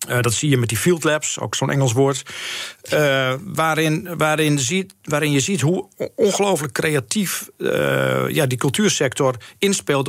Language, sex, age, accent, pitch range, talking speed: Dutch, male, 50-69, Dutch, 130-165 Hz, 160 wpm